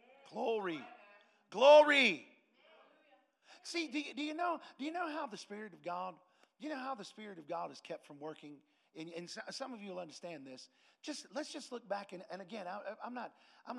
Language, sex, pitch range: English, male, 180-280 Hz